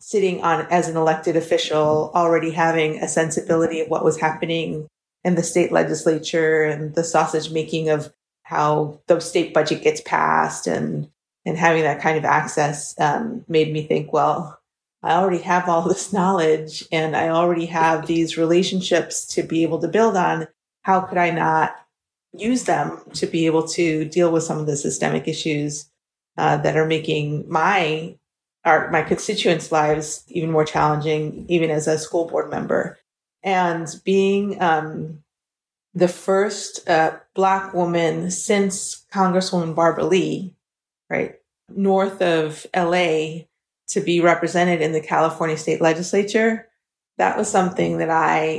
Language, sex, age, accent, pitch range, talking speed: English, female, 30-49, American, 155-175 Hz, 150 wpm